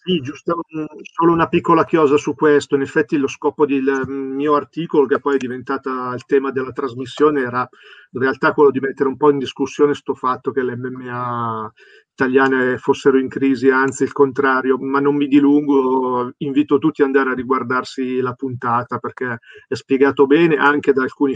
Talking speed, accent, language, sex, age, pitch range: 175 wpm, native, Italian, male, 40-59, 130-145 Hz